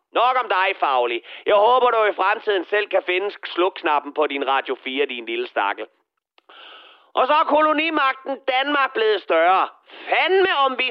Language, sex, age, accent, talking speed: Danish, male, 30-49, native, 170 wpm